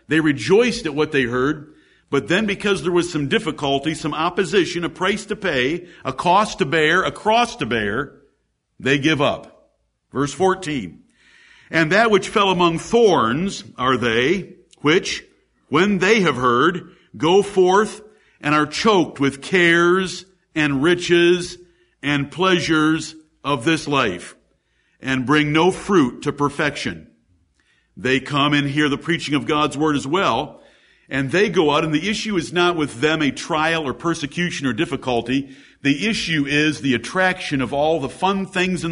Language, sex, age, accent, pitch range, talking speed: English, male, 50-69, American, 145-185 Hz, 160 wpm